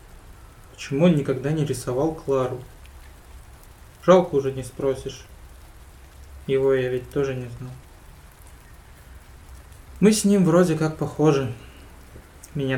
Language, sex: Russian, male